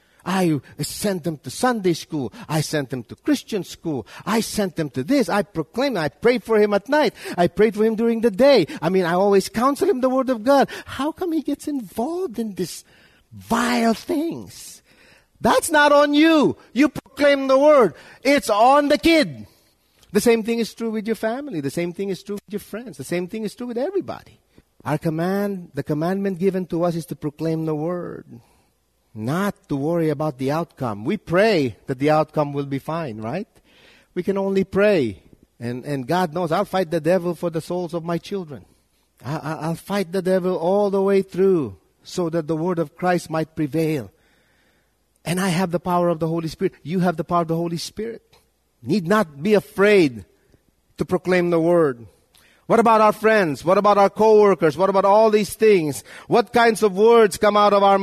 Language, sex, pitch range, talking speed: English, male, 160-220 Hz, 200 wpm